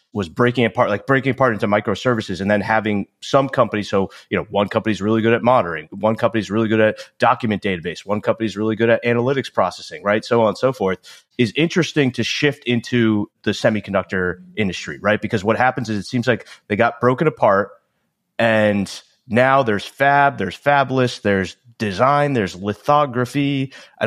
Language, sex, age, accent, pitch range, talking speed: English, male, 30-49, American, 105-130 Hz, 185 wpm